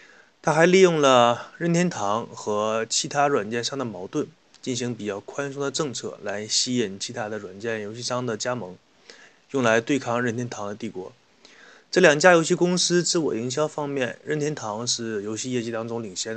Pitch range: 110-145 Hz